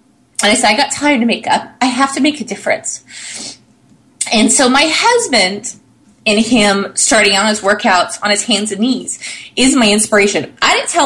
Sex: female